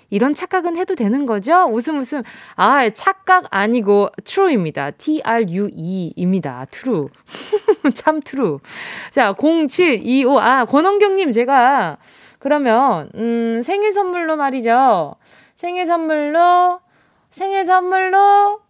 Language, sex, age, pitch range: Korean, female, 20-39, 220-350 Hz